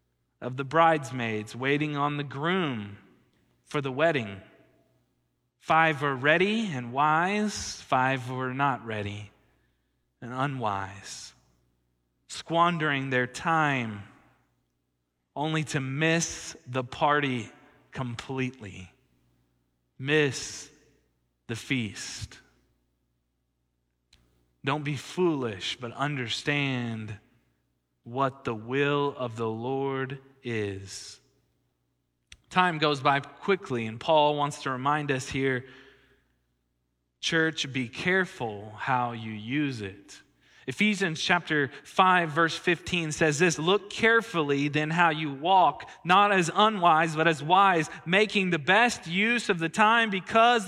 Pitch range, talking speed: 105-160 Hz, 110 wpm